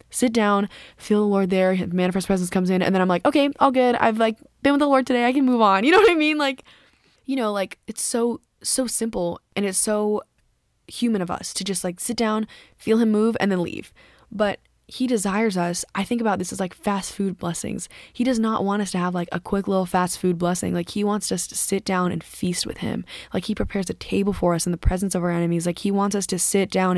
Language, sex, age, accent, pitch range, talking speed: English, female, 10-29, American, 185-240 Hz, 260 wpm